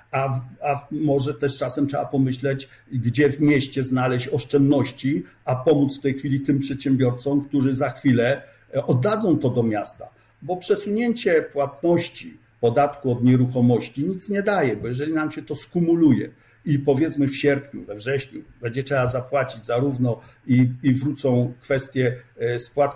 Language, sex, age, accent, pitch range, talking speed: Polish, male, 50-69, native, 125-155 Hz, 145 wpm